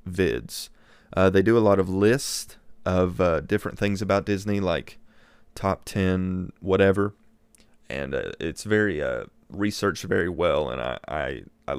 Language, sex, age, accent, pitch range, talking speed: English, male, 30-49, American, 95-105 Hz, 155 wpm